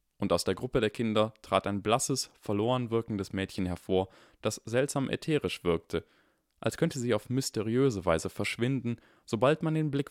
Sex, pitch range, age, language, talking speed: male, 90-120 Hz, 20-39, German, 165 wpm